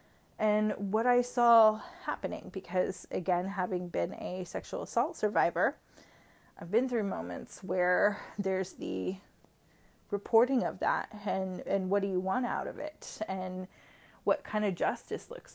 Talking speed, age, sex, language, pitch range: 145 wpm, 20-39, female, English, 180-215 Hz